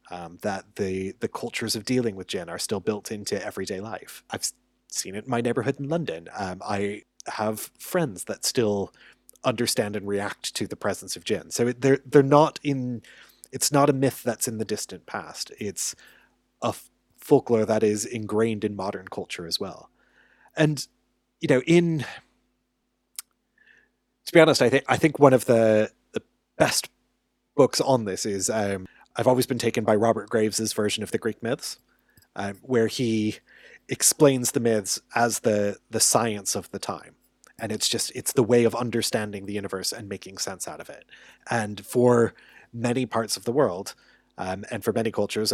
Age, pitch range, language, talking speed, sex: 30-49, 100-125 Hz, English, 180 wpm, male